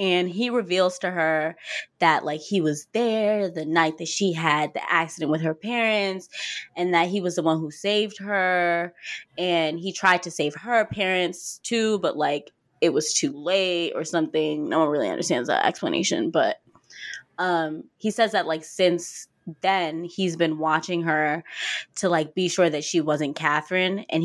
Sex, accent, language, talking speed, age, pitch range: female, American, English, 180 wpm, 20-39, 165-220 Hz